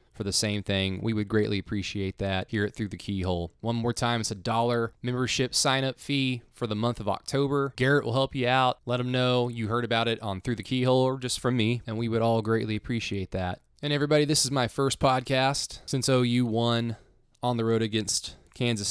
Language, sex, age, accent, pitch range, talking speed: English, male, 20-39, American, 100-125 Hz, 220 wpm